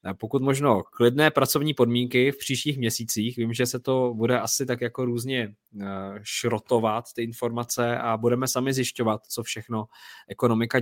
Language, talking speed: Czech, 150 wpm